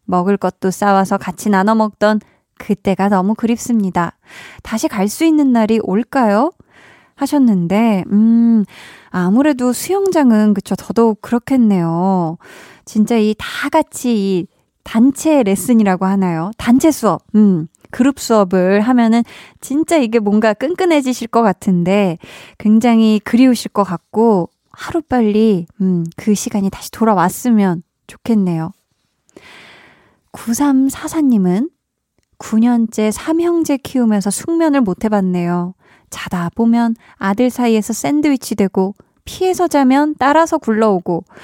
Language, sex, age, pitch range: Korean, female, 20-39, 195-255 Hz